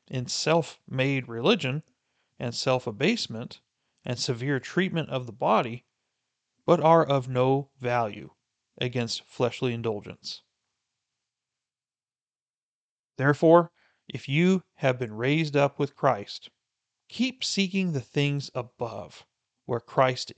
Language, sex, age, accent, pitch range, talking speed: English, male, 40-59, American, 120-150 Hz, 105 wpm